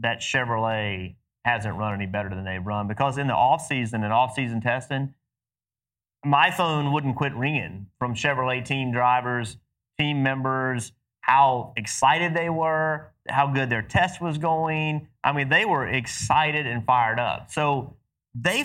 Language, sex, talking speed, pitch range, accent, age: English, male, 150 wpm, 115-150 Hz, American, 30-49